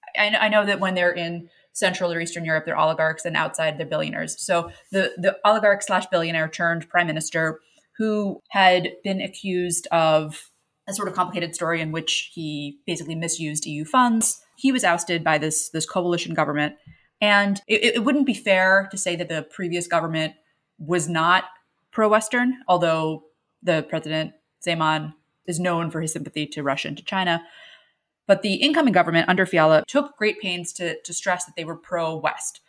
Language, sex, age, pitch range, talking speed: English, female, 30-49, 160-195 Hz, 175 wpm